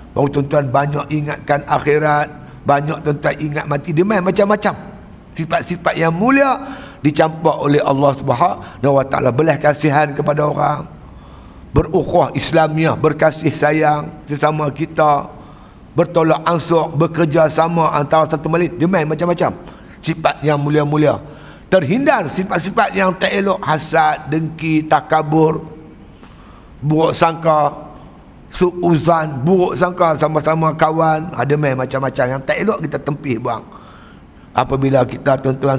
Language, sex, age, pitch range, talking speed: Malay, male, 50-69, 140-170 Hz, 115 wpm